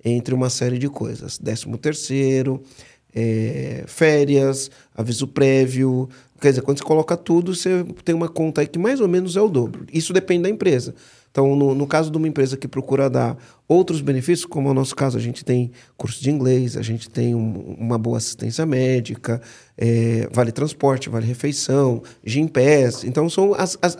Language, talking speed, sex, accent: Portuguese, 185 wpm, male, Brazilian